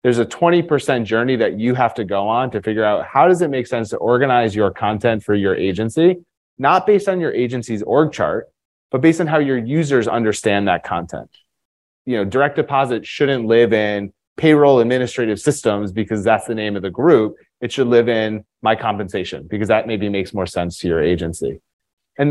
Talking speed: 200 wpm